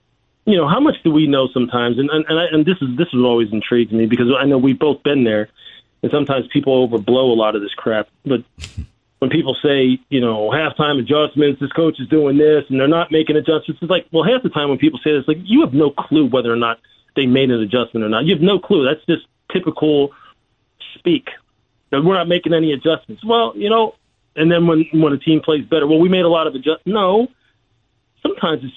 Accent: American